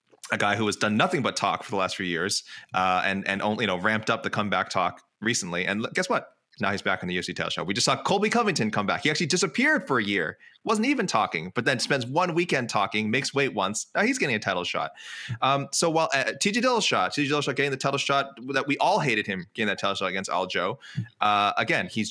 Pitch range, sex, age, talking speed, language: 100-140 Hz, male, 20-39, 250 wpm, English